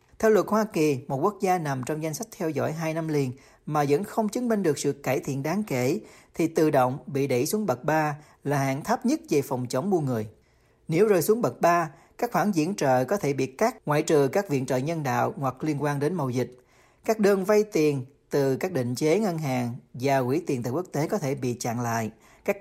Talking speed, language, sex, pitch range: 245 wpm, Vietnamese, male, 130-175 Hz